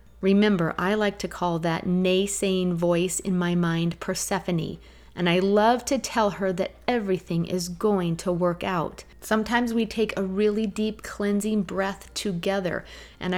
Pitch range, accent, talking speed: 175-200 Hz, American, 155 wpm